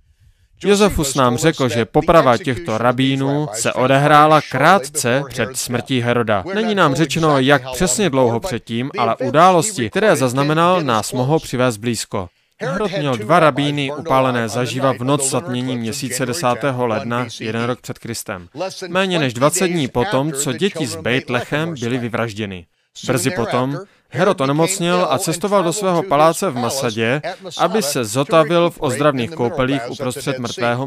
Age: 30-49